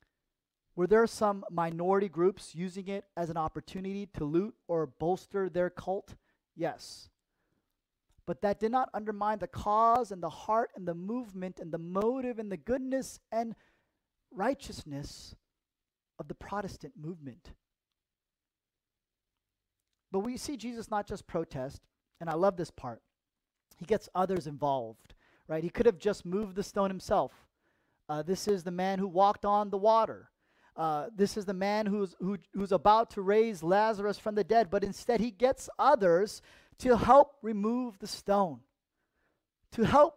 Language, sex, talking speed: English, male, 155 wpm